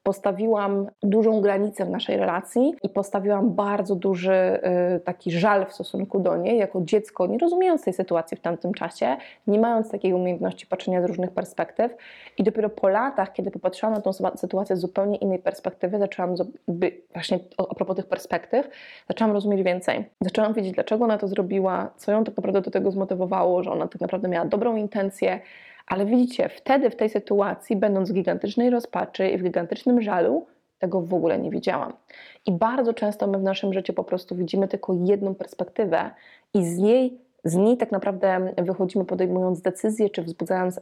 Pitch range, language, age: 180-210 Hz, Polish, 20-39